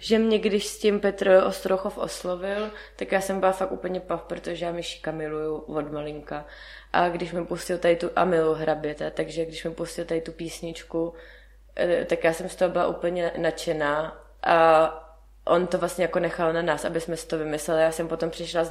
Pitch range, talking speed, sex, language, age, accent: 165-185 Hz, 200 wpm, female, Czech, 20-39, native